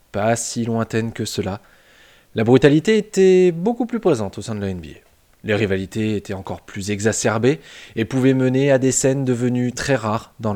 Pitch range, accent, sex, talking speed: 100-135 Hz, French, male, 180 wpm